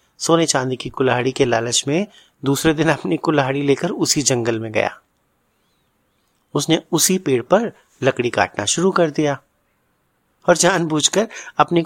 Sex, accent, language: male, native, Hindi